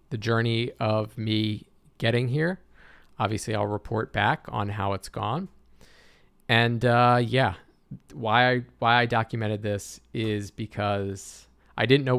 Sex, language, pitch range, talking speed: male, English, 100-120 Hz, 135 wpm